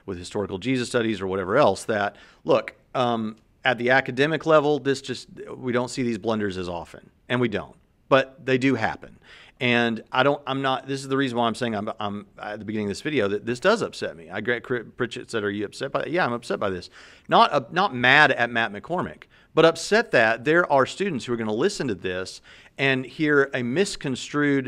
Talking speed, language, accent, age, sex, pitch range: 225 wpm, English, American, 40-59, male, 100-130 Hz